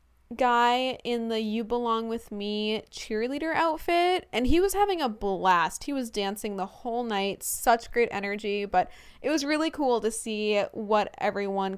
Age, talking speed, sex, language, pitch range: 10-29, 170 wpm, female, English, 200-255 Hz